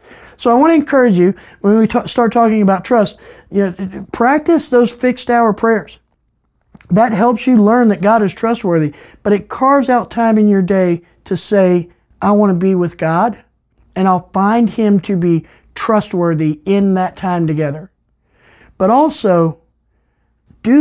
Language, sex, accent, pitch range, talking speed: English, male, American, 170-225 Hz, 165 wpm